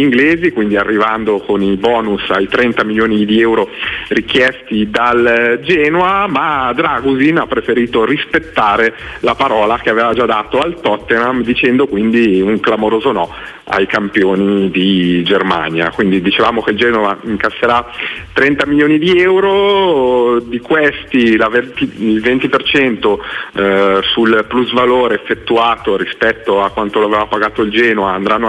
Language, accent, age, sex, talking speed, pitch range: Italian, native, 40-59, male, 130 wpm, 100-125 Hz